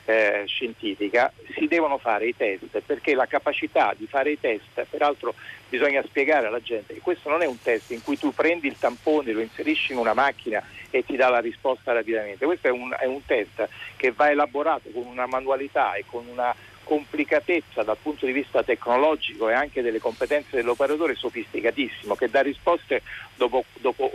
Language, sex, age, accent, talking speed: Italian, male, 50-69, native, 185 wpm